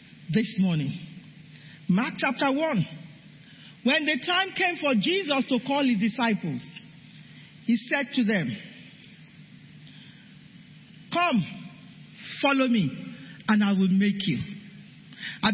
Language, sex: English, male